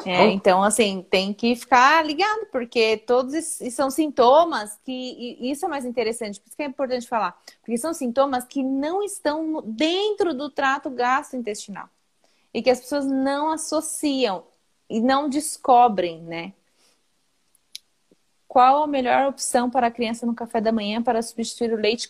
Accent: Brazilian